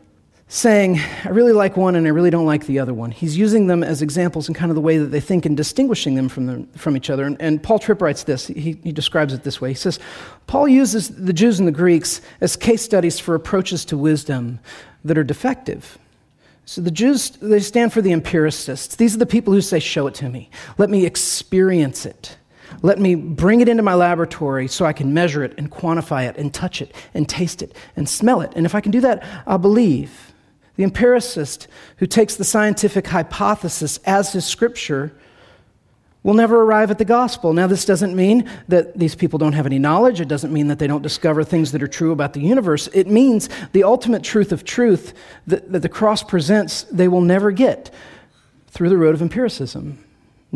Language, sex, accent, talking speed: English, male, American, 215 wpm